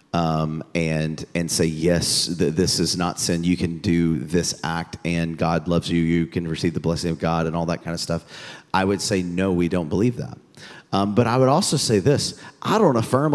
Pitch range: 95-150 Hz